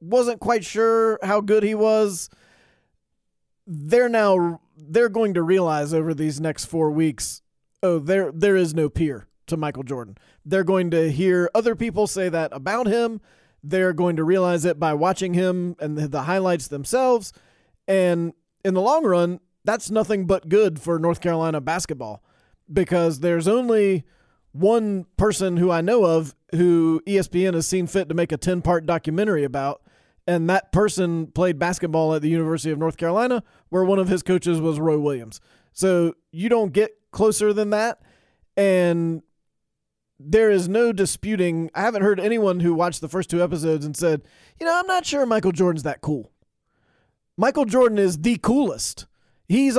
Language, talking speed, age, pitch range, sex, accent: English, 170 wpm, 30-49, 160-205 Hz, male, American